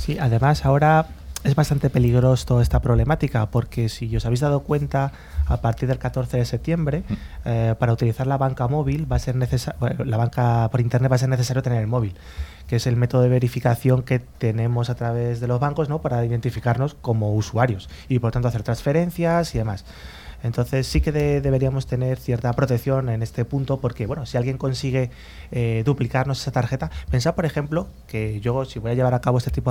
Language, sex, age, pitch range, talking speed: Spanish, male, 20-39, 115-135 Hz, 205 wpm